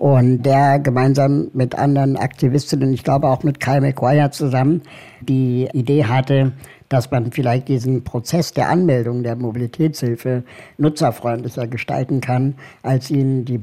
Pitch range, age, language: 120-140 Hz, 60-79, German